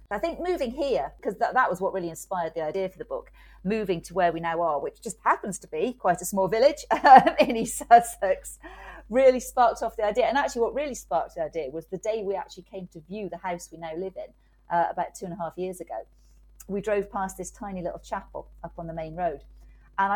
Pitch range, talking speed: 170-230 Hz, 245 wpm